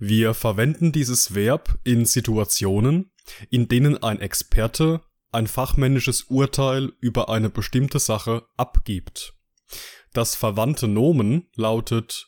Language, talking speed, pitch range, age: German, 110 wpm, 105-135 Hz, 20-39